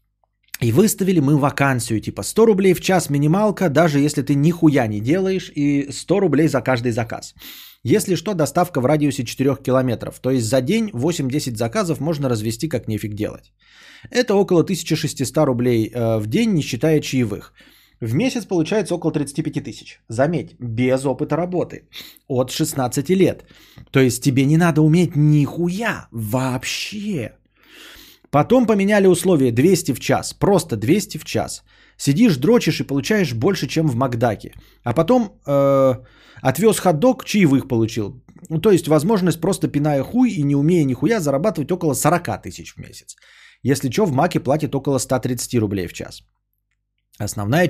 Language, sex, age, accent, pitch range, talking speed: Russian, male, 30-49, native, 125-175 Hz, 155 wpm